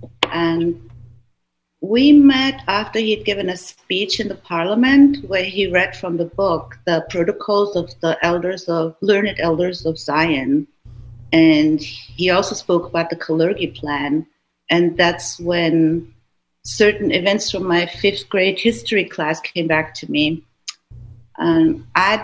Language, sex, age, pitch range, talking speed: English, female, 50-69, 155-195 Hz, 140 wpm